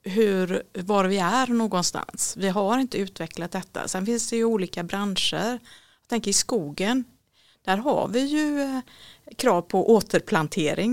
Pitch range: 175-225 Hz